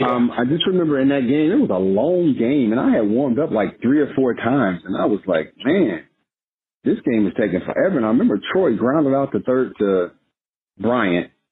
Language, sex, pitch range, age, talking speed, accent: English, male, 105-145 Hz, 50-69, 220 wpm, American